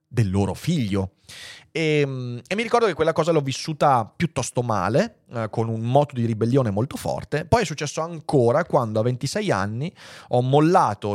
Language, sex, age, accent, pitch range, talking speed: Italian, male, 30-49, native, 110-150 Hz, 170 wpm